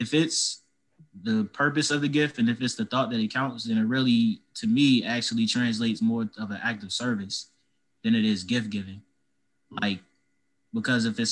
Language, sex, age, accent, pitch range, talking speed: English, male, 20-39, American, 105-120 Hz, 195 wpm